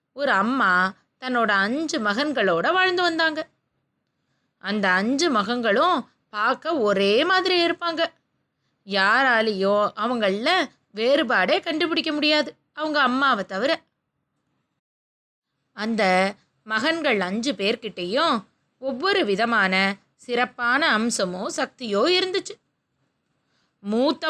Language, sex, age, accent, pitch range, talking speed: Tamil, female, 20-39, native, 215-325 Hz, 80 wpm